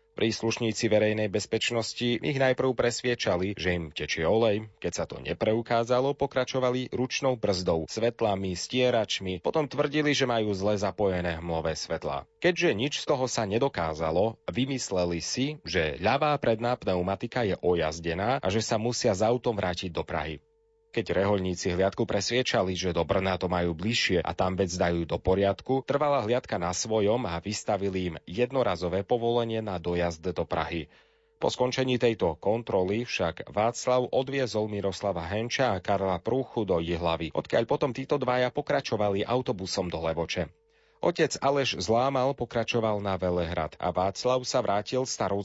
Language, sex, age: Slovak, male, 30-49